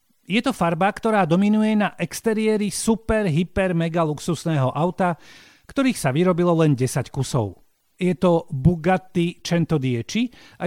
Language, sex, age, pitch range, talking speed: Slovak, male, 40-59, 145-190 Hz, 130 wpm